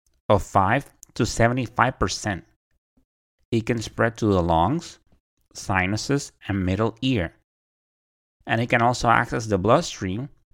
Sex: male